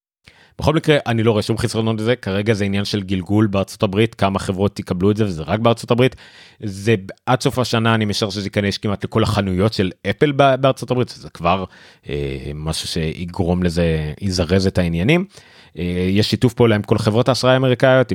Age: 30-49